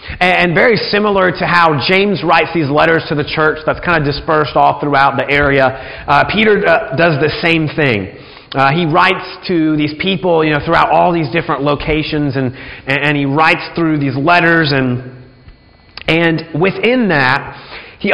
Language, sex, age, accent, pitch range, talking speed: English, male, 30-49, American, 135-175 Hz, 170 wpm